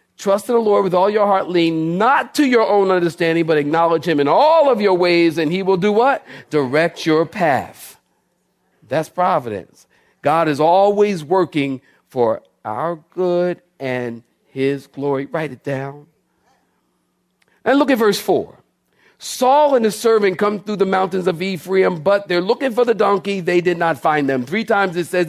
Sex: male